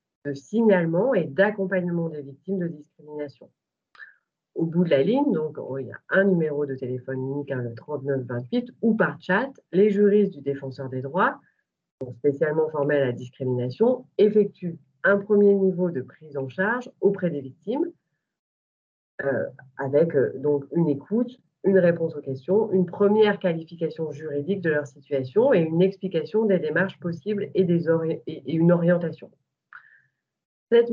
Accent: French